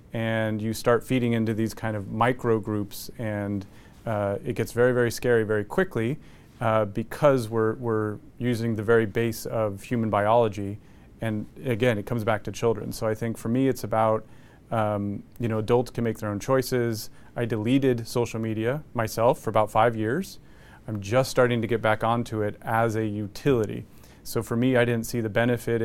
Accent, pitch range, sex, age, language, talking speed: American, 110-125 Hz, male, 30-49, English, 190 wpm